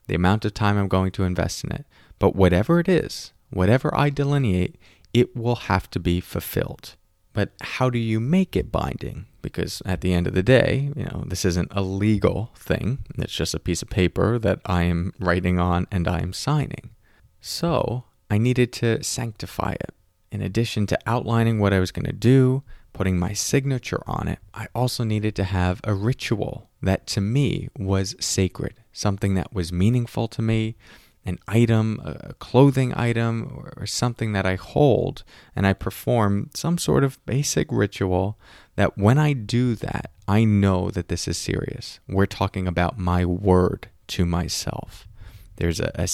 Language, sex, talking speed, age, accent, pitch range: English, male, 175 wpm, 30-49, American, 90-120 Hz